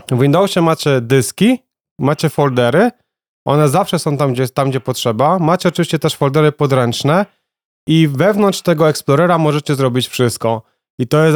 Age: 30-49